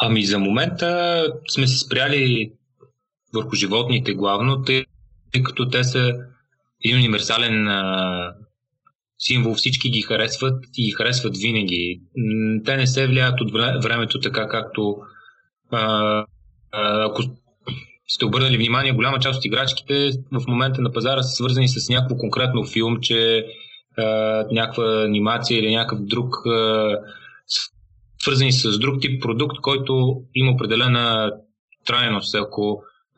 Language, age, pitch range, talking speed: Bulgarian, 30-49, 110-130 Hz, 115 wpm